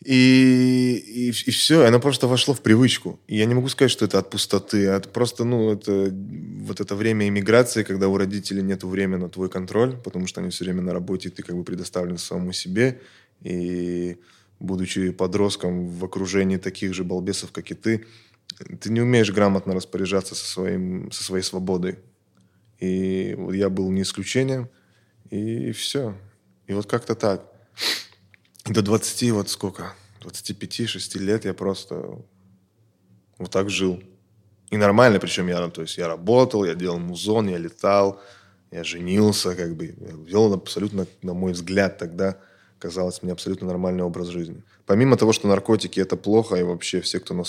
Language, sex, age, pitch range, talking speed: Russian, male, 20-39, 90-105 Hz, 170 wpm